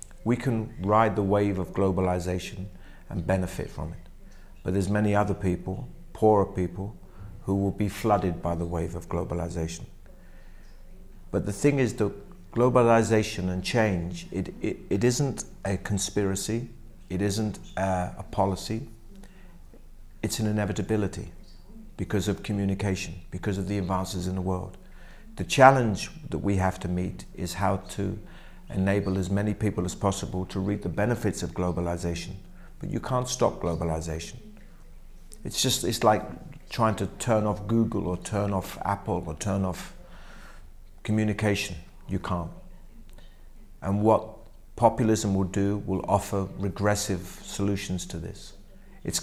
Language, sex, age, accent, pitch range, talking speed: English, male, 50-69, British, 90-105 Hz, 145 wpm